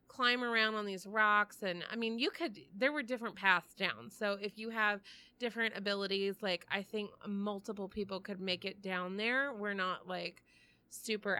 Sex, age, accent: female, 30-49, American